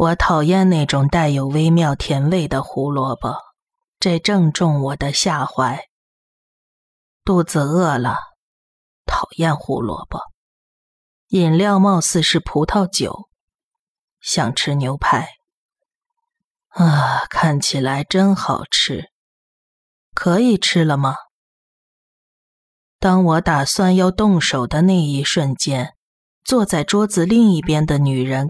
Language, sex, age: Chinese, female, 30-49